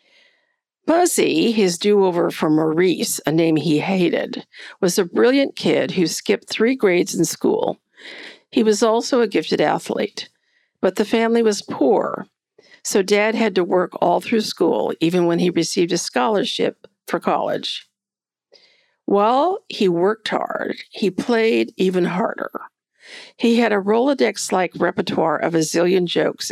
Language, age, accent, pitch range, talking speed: English, 50-69, American, 180-245 Hz, 145 wpm